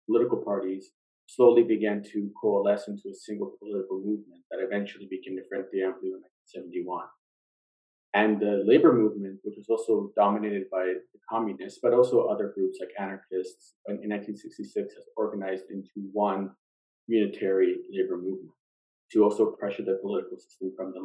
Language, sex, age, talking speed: English, male, 30-49, 150 wpm